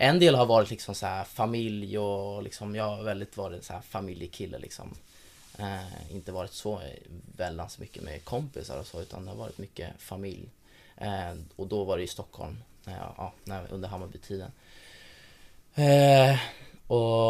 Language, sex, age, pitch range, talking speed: Swedish, male, 20-39, 95-110 Hz, 155 wpm